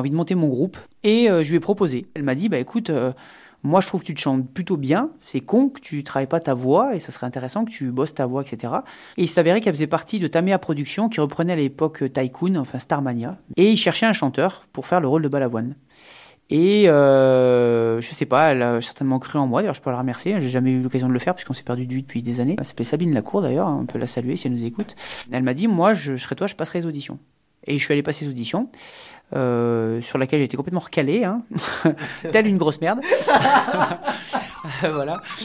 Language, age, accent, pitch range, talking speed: French, 30-49, French, 130-185 Hz, 245 wpm